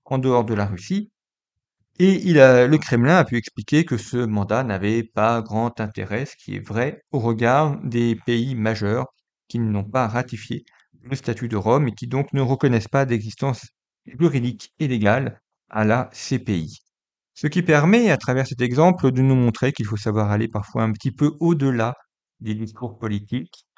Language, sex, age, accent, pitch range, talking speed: French, male, 40-59, French, 110-135 Hz, 180 wpm